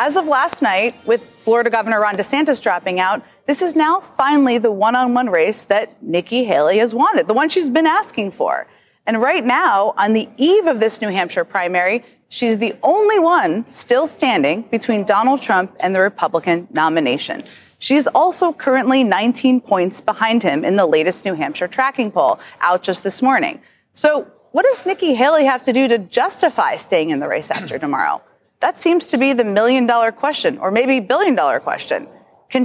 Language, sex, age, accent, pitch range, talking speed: English, female, 30-49, American, 205-295 Hz, 180 wpm